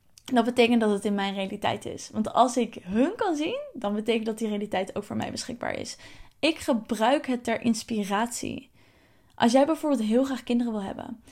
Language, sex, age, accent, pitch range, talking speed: Dutch, female, 10-29, Dutch, 220-265 Hz, 195 wpm